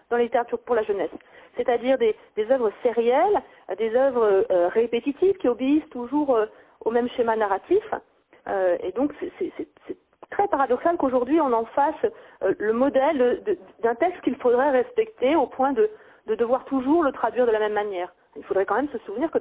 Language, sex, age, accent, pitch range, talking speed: French, female, 40-59, French, 220-360 Hz, 200 wpm